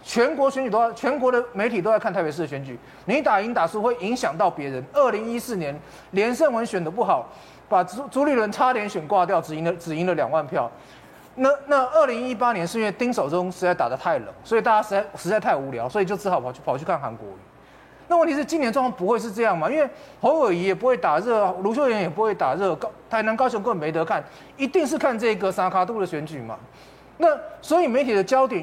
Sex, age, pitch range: male, 30-49, 175-245 Hz